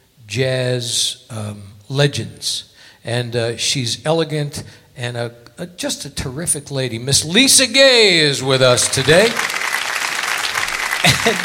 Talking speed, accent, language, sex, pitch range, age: 115 wpm, American, English, male, 120-160 Hz, 60-79